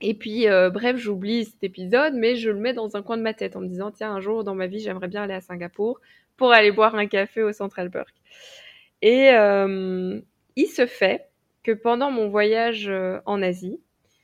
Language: French